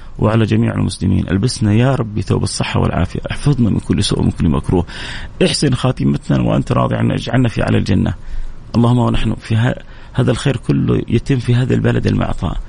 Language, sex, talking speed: English, male, 170 wpm